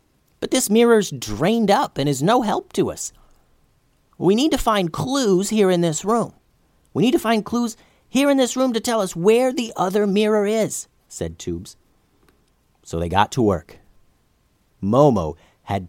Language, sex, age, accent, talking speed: English, male, 40-59, American, 175 wpm